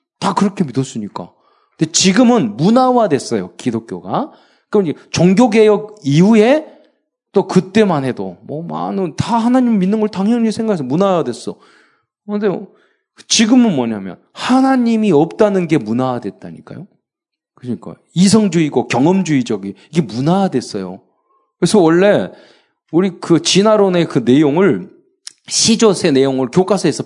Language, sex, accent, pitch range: Korean, male, native, 140-220 Hz